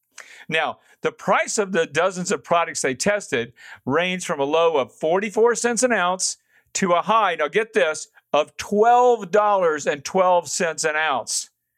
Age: 50-69